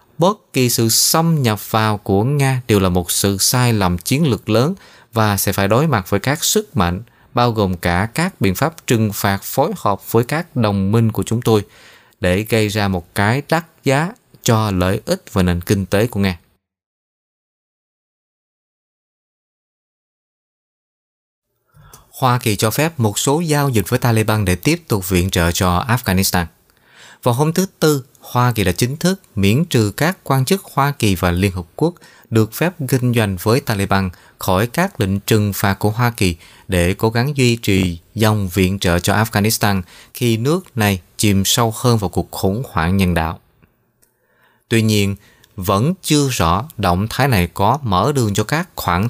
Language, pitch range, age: Vietnamese, 95-130 Hz, 20-39